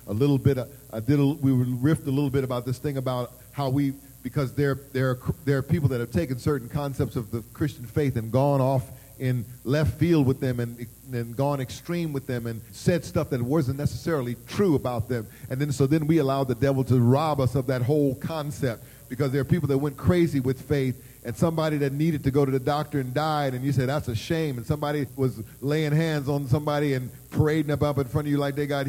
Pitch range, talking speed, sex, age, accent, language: 130-160 Hz, 240 wpm, male, 40-59, American, English